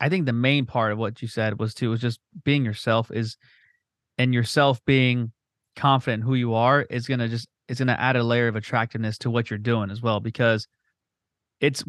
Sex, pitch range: male, 115-135 Hz